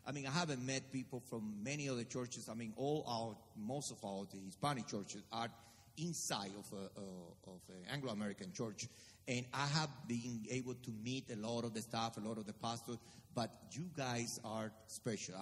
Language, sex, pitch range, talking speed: English, male, 115-150 Hz, 195 wpm